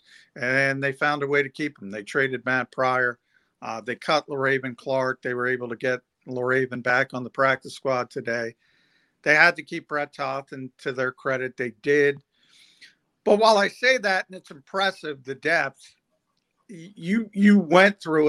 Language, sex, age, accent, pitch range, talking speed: English, male, 50-69, American, 130-150 Hz, 180 wpm